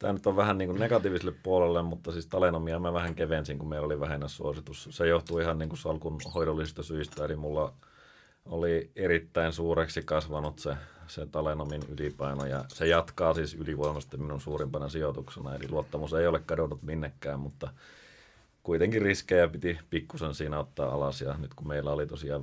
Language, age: Finnish, 30-49